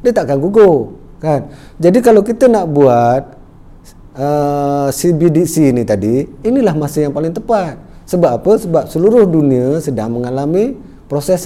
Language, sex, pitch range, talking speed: Malay, male, 160-225 Hz, 135 wpm